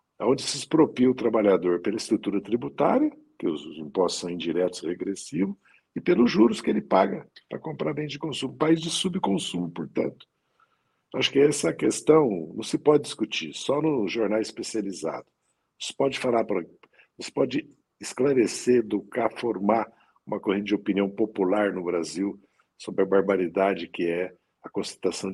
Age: 60-79